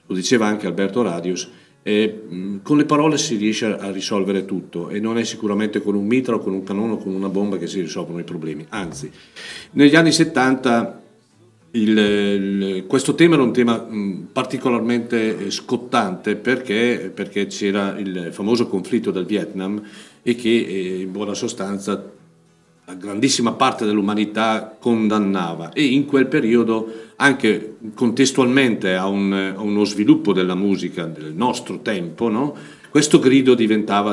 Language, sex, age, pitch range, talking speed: Italian, male, 50-69, 95-120 Hz, 145 wpm